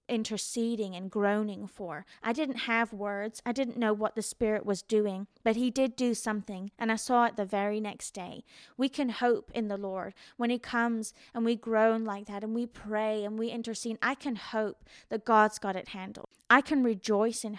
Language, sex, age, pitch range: English, female, 20-39, 210-245 Hz